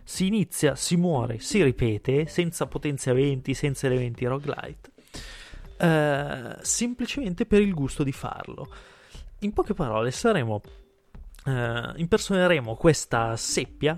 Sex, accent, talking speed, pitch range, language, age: male, native, 110 wpm, 120-155 Hz, Italian, 20-39